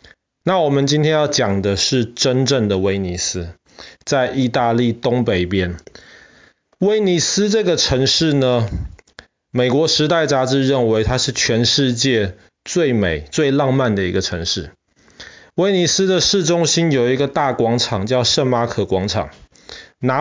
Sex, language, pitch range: male, Chinese, 115-165 Hz